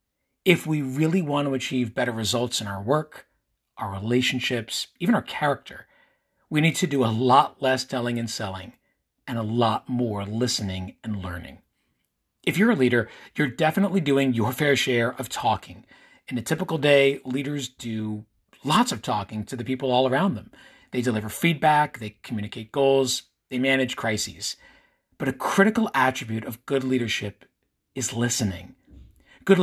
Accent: American